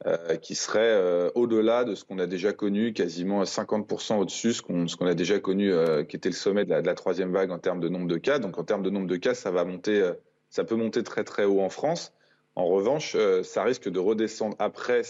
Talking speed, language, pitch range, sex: 260 wpm, French, 95-135 Hz, male